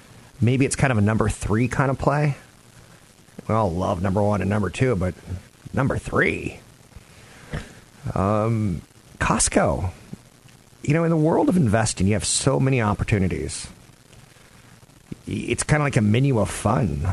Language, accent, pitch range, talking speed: English, American, 95-120 Hz, 150 wpm